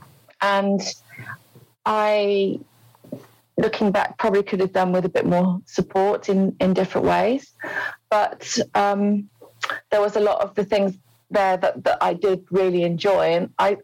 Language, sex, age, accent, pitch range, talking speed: English, female, 30-49, British, 170-200 Hz, 150 wpm